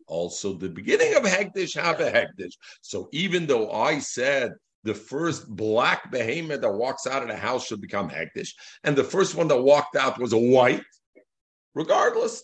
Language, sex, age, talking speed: English, male, 50-69, 180 wpm